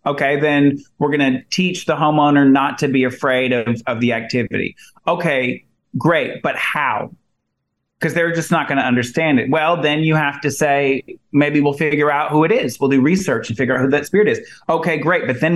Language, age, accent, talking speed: English, 30-49, American, 210 wpm